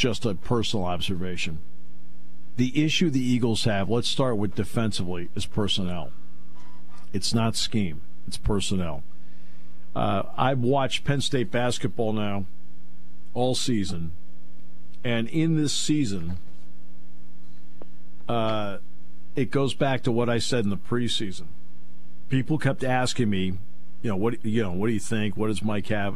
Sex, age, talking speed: male, 50-69, 140 wpm